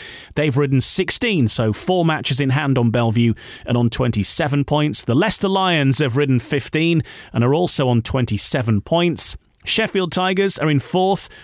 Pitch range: 120-170 Hz